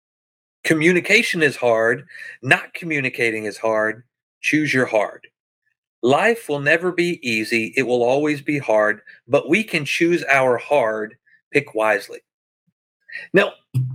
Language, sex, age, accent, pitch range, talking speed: English, male, 40-59, American, 135-195 Hz, 125 wpm